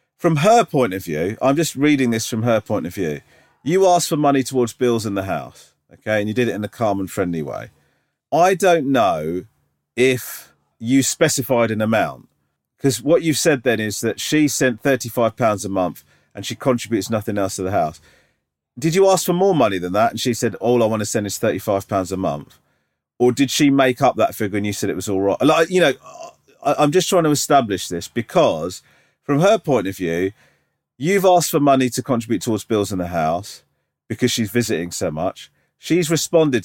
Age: 40-59